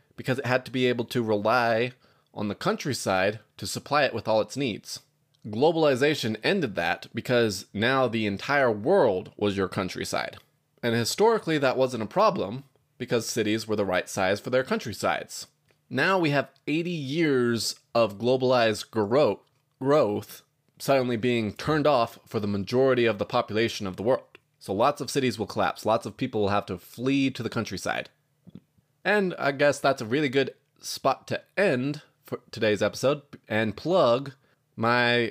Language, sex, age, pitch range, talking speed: English, male, 20-39, 110-140 Hz, 165 wpm